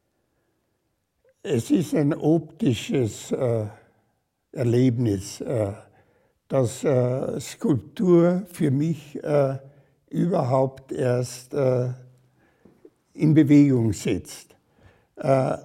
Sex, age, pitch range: male, 60-79, 140-185 Hz